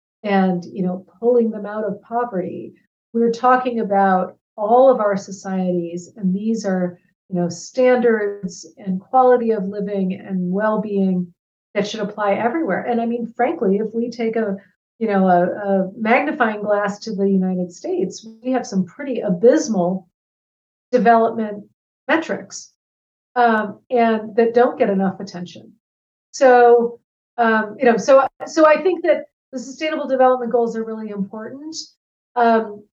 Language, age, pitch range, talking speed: English, 50-69, 195-240 Hz, 145 wpm